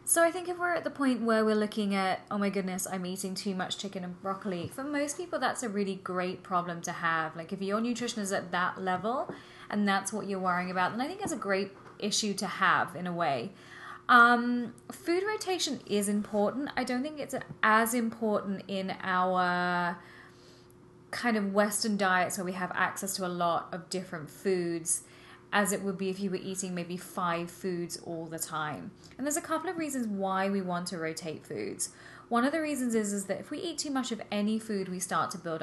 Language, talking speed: English, 220 wpm